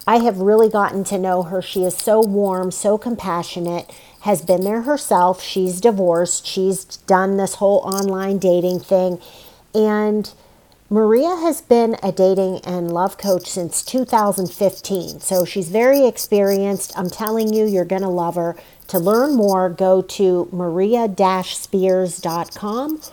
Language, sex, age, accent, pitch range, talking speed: English, female, 40-59, American, 180-215 Hz, 145 wpm